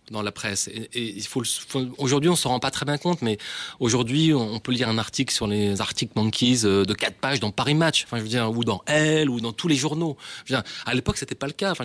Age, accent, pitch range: 30-49, French, 110-140 Hz